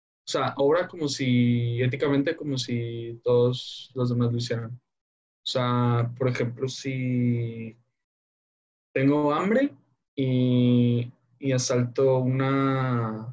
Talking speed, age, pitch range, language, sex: 110 wpm, 10-29, 120-130 Hz, Spanish, male